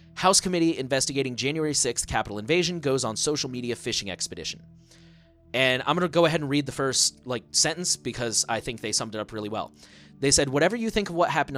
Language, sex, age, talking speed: English, male, 30-49, 220 wpm